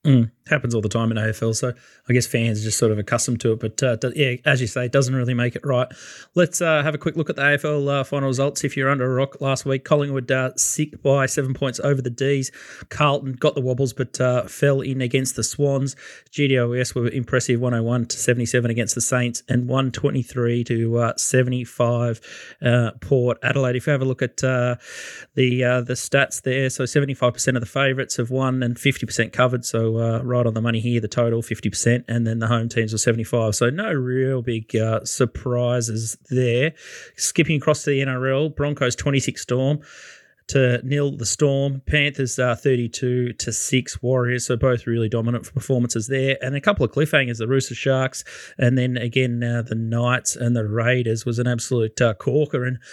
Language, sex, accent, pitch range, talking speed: English, male, Australian, 120-135 Hz, 205 wpm